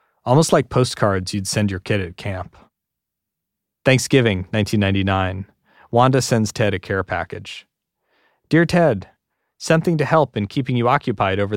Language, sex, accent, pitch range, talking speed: English, male, American, 100-130 Hz, 140 wpm